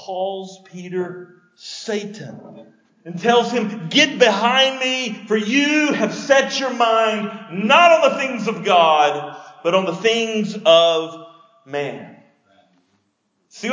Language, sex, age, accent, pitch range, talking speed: English, male, 50-69, American, 200-260 Hz, 120 wpm